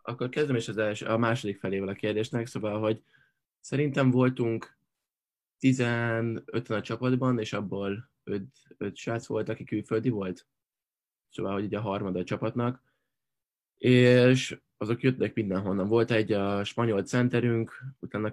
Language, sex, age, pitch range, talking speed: Hungarian, male, 20-39, 100-120 Hz, 140 wpm